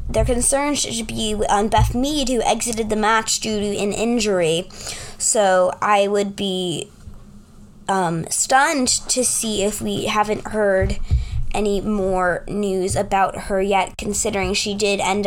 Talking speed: 145 wpm